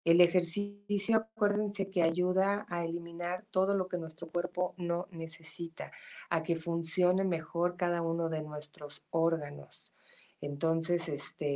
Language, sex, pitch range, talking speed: Spanish, female, 150-175 Hz, 125 wpm